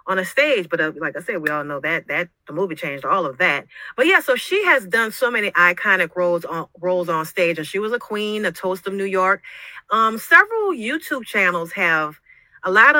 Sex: female